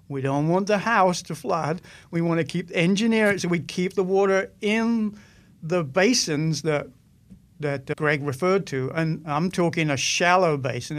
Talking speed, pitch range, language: 155 wpm, 155-190 Hz, English